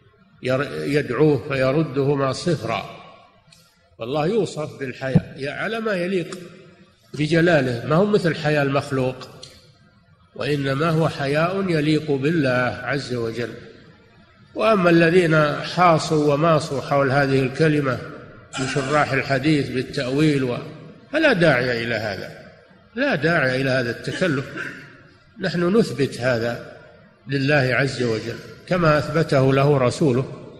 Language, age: Arabic, 50-69